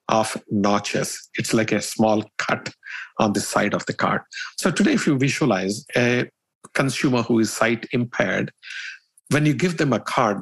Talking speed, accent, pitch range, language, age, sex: 165 wpm, Indian, 115-150 Hz, German, 50-69, male